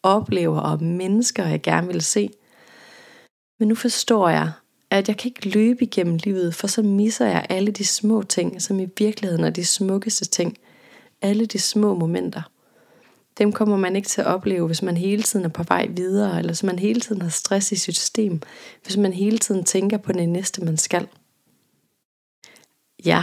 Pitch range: 170-205 Hz